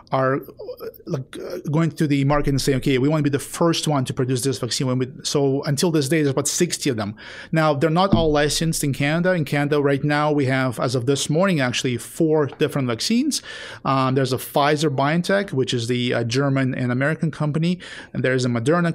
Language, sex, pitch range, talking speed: English, male, 135-165 Hz, 215 wpm